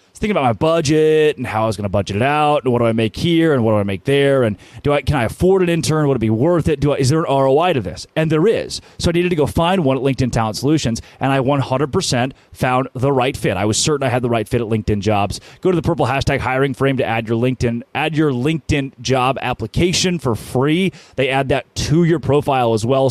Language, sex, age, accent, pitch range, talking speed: English, male, 30-49, American, 115-155 Hz, 270 wpm